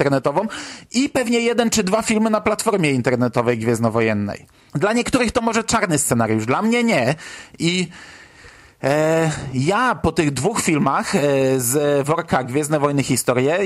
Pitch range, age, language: 150-220 Hz, 40-59, Polish